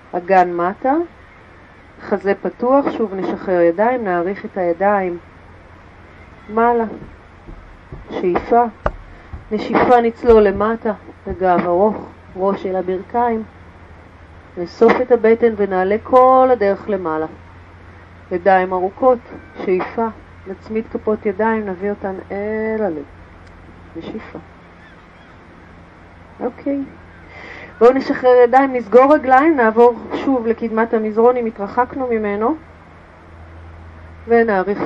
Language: Hebrew